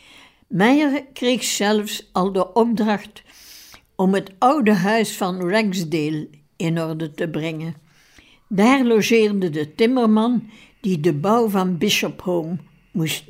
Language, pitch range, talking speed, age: Dutch, 175-225 Hz, 120 wpm, 60-79